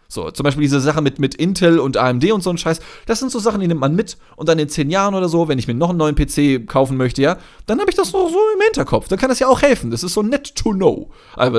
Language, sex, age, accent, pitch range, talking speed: German, male, 30-49, German, 140-230 Hz, 310 wpm